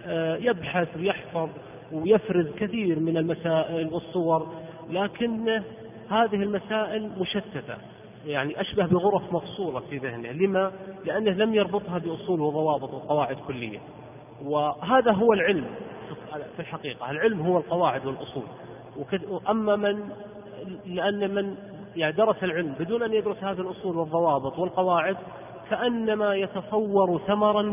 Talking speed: 110 wpm